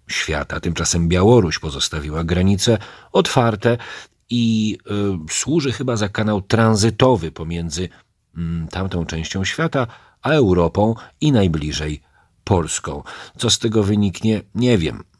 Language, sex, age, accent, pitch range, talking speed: Polish, male, 40-59, native, 80-100 Hz, 105 wpm